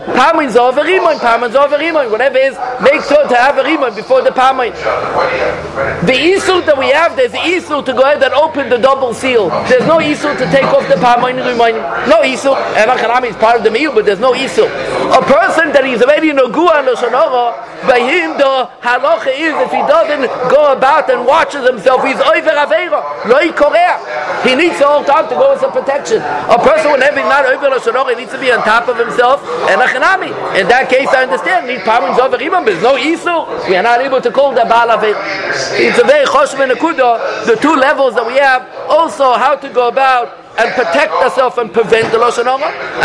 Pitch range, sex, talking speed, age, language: 245-300 Hz, male, 200 wpm, 50-69, English